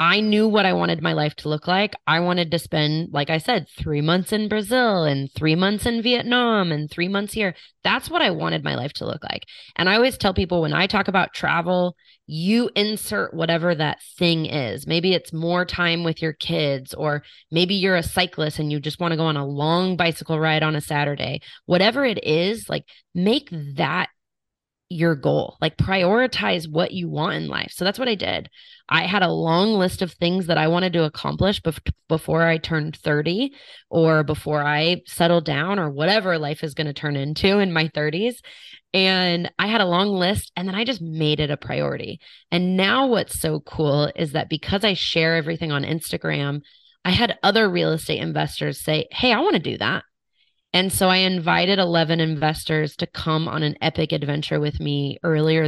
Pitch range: 155-185 Hz